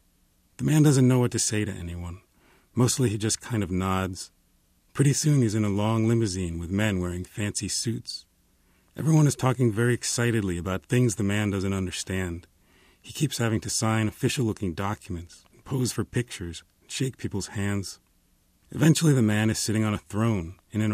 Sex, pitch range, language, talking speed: male, 90-115 Hz, English, 180 wpm